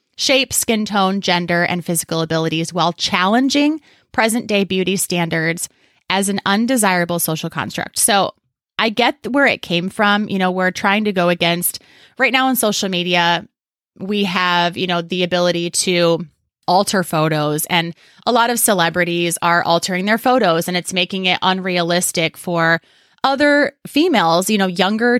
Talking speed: 155 wpm